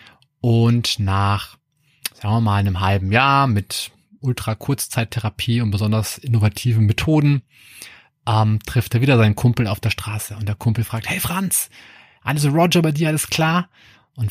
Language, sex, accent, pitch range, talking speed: German, male, German, 105-140 Hz, 155 wpm